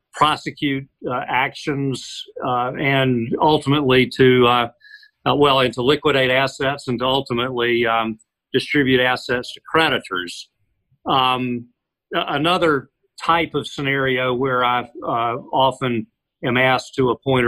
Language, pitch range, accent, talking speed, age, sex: English, 120-135 Hz, American, 115 wpm, 50-69, male